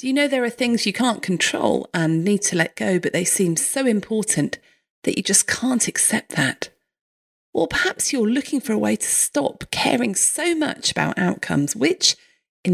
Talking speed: 190 wpm